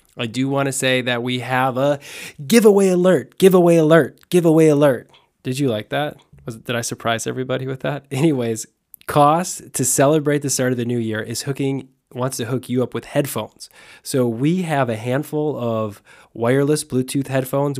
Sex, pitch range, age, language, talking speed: male, 115-145 Hz, 20-39, English, 180 wpm